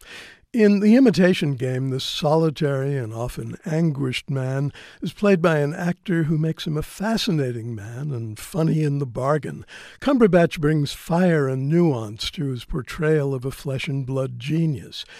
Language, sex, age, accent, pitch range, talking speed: English, male, 60-79, American, 130-170 Hz, 150 wpm